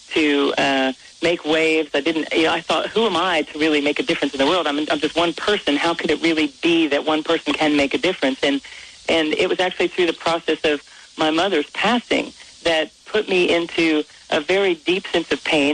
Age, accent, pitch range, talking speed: 40-59, American, 150-180 Hz, 230 wpm